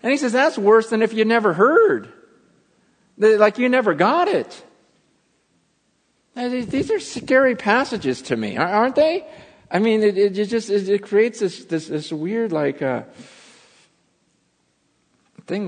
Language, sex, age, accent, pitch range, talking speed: English, male, 50-69, American, 135-220 Hz, 145 wpm